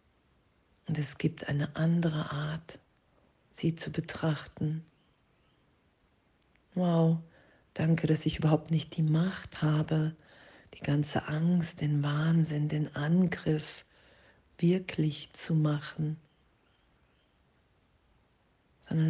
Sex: female